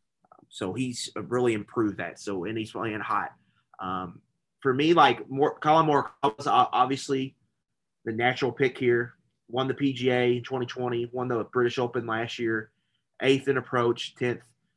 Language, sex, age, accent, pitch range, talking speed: English, male, 30-49, American, 115-135 Hz, 150 wpm